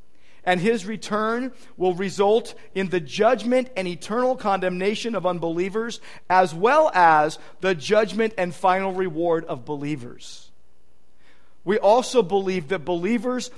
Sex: male